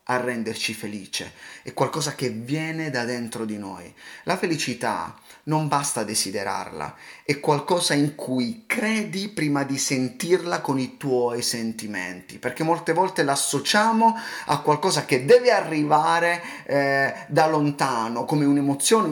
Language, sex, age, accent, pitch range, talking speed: Italian, male, 30-49, native, 145-210 Hz, 130 wpm